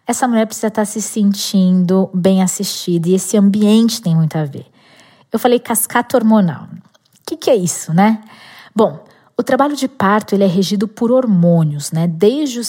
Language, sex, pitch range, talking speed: Portuguese, female, 185-250 Hz, 180 wpm